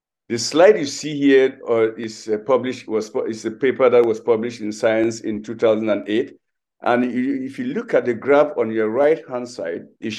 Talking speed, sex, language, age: 195 wpm, male, English, 60-79